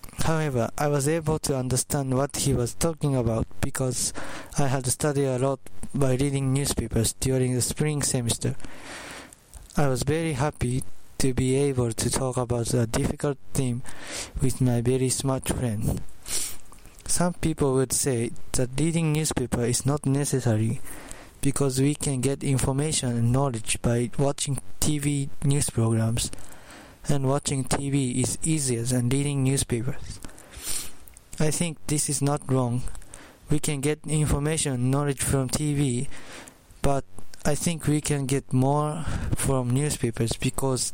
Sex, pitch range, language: male, 120-145 Hz, English